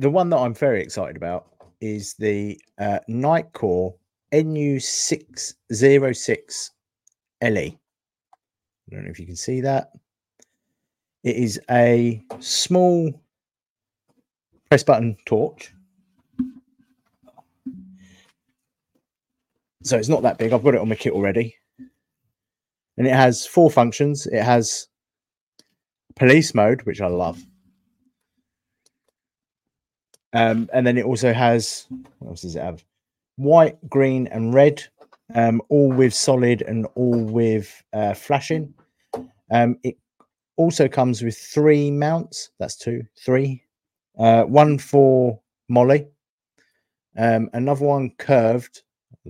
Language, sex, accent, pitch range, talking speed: English, male, British, 110-145 Hz, 115 wpm